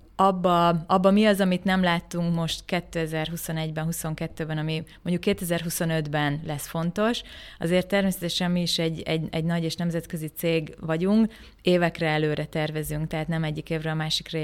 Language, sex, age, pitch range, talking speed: Hungarian, female, 20-39, 160-185 Hz, 150 wpm